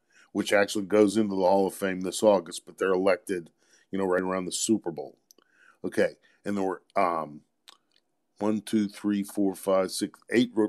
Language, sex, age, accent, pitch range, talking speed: English, male, 50-69, American, 95-110 Hz, 165 wpm